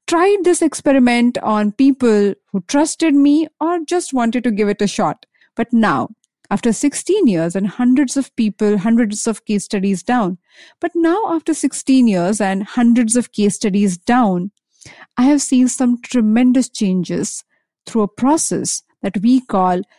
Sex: female